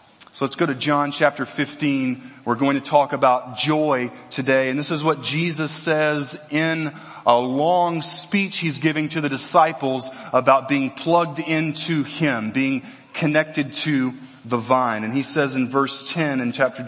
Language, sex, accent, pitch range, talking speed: English, male, American, 135-180 Hz, 165 wpm